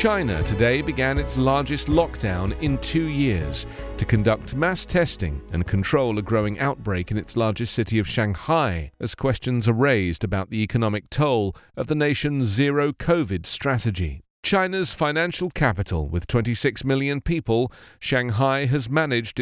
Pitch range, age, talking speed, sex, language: 105-145 Hz, 40-59, 150 wpm, male, English